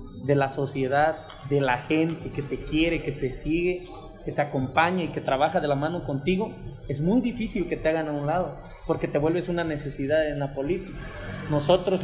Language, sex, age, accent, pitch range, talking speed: Spanish, male, 20-39, Mexican, 140-175 Hz, 200 wpm